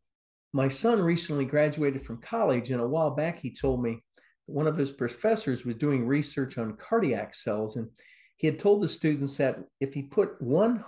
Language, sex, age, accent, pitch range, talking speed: English, male, 50-69, American, 130-180 Hz, 190 wpm